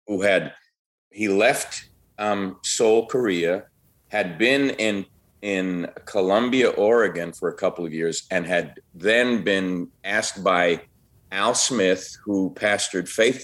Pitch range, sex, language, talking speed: 100-125 Hz, male, English, 130 wpm